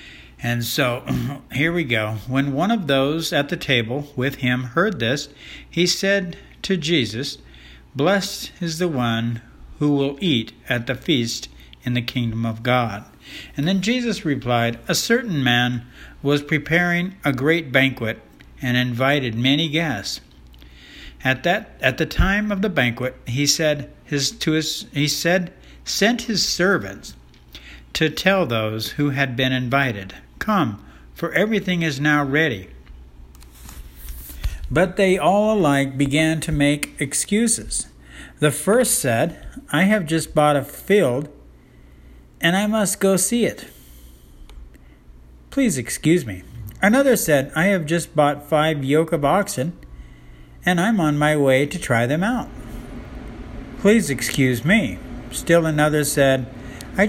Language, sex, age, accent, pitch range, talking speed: English, male, 60-79, American, 115-170 Hz, 140 wpm